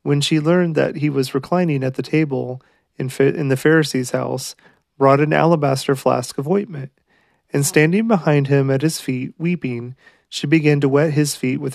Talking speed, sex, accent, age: 180 wpm, male, American, 30-49